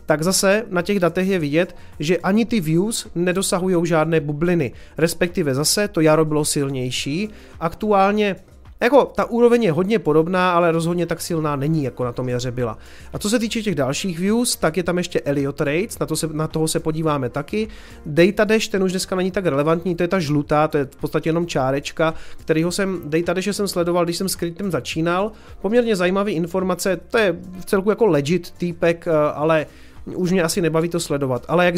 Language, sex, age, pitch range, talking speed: Czech, male, 30-49, 155-185 Hz, 200 wpm